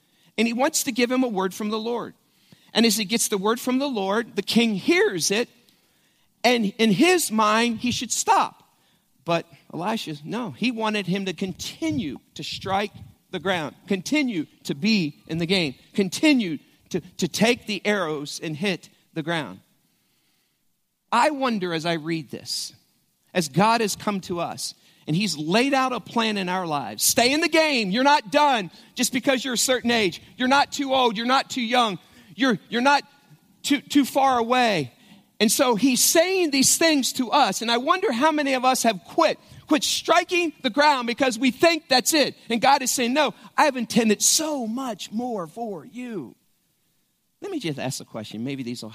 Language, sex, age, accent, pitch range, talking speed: English, male, 40-59, American, 185-260 Hz, 190 wpm